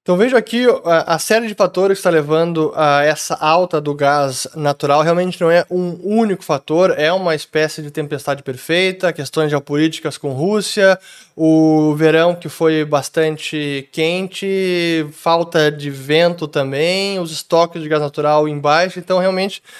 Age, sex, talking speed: 20-39, male, 150 wpm